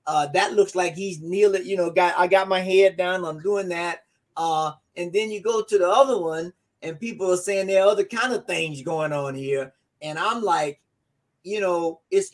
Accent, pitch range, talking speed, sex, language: American, 155-210 Hz, 220 wpm, male, English